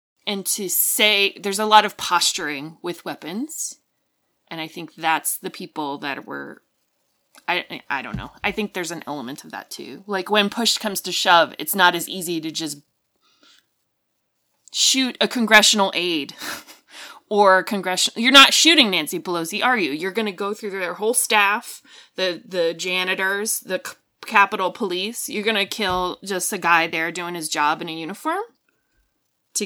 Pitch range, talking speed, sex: 170-220 Hz, 170 wpm, female